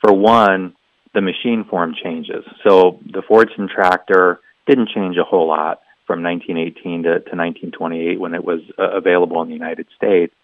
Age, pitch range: 30-49, 85-95 Hz